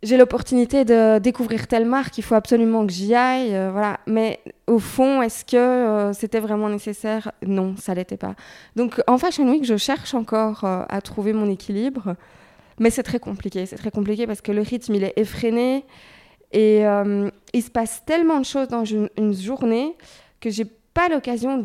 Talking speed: 195 wpm